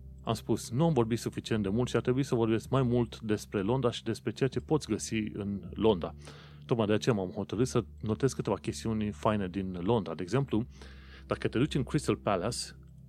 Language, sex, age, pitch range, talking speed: Romanian, male, 30-49, 95-130 Hz, 205 wpm